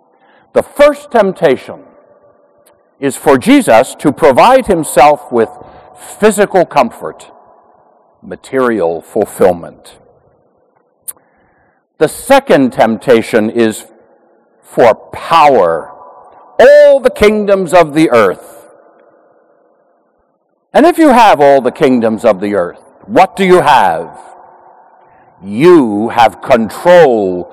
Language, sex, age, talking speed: English, male, 60-79, 95 wpm